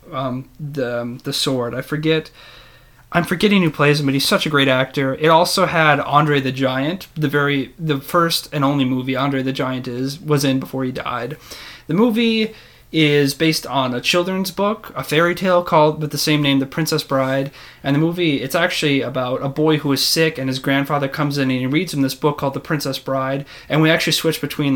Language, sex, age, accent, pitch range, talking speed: English, male, 30-49, American, 135-155 Hz, 215 wpm